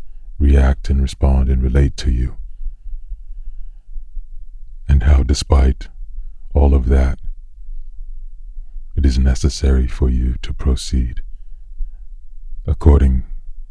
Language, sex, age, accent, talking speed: English, male, 40-59, American, 90 wpm